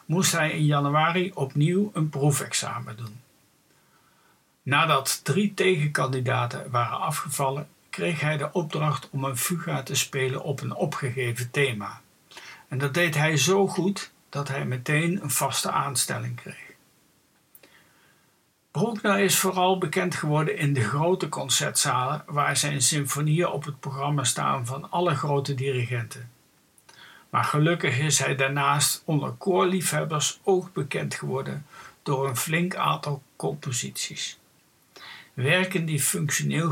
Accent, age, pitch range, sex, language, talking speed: Dutch, 60-79, 135-165 Hz, male, Dutch, 125 wpm